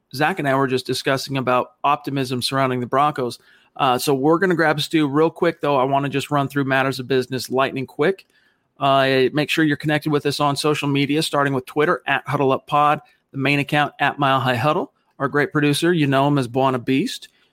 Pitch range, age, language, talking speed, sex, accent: 130-150 Hz, 40-59, English, 210 wpm, male, American